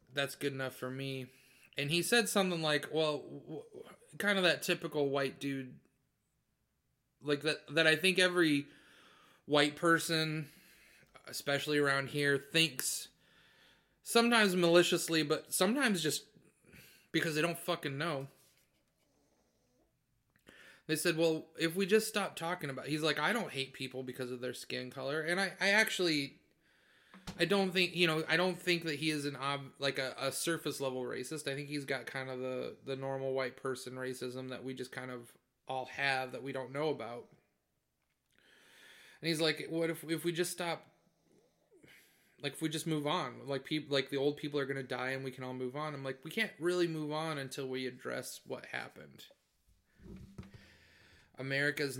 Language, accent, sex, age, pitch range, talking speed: English, American, male, 30-49, 130-165 Hz, 175 wpm